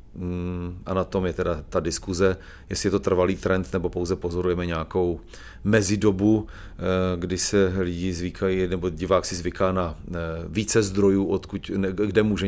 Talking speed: 145 wpm